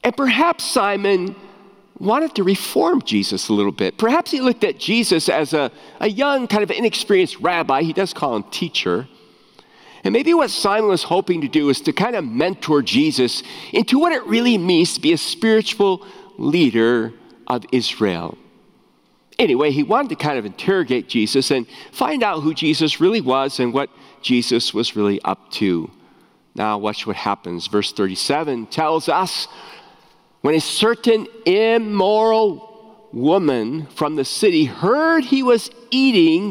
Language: English